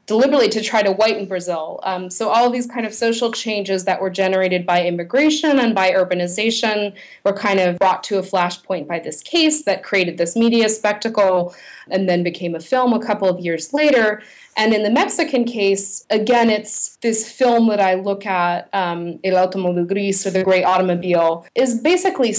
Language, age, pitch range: English, 30-49, 185-220 Hz